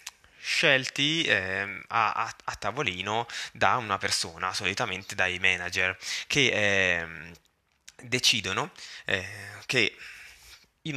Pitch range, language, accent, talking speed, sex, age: 95-115 Hz, Italian, native, 100 wpm, male, 20-39